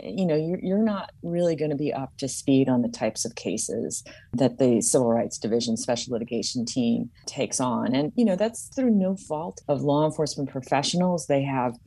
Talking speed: 200 wpm